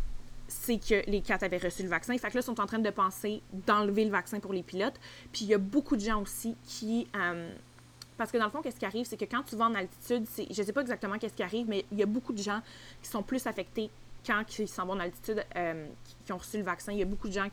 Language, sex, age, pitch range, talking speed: French, female, 20-39, 185-225 Hz, 300 wpm